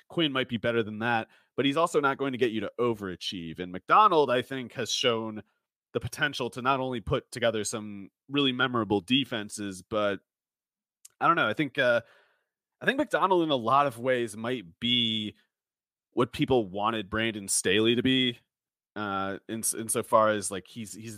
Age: 30-49